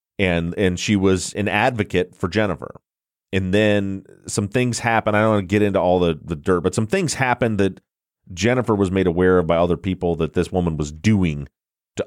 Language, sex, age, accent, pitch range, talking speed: English, male, 30-49, American, 85-105 Hz, 210 wpm